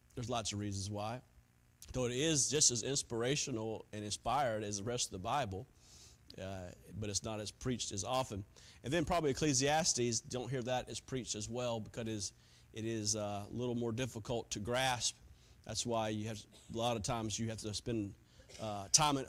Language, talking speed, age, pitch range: English, 195 wpm, 40-59, 115-150 Hz